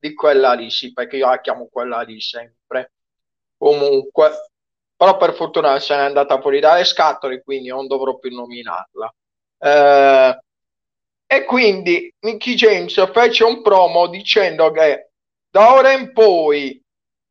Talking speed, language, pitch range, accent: 140 wpm, Italian, 155-230 Hz, native